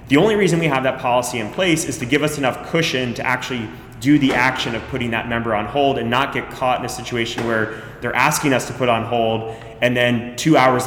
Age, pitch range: 20-39, 115-135 Hz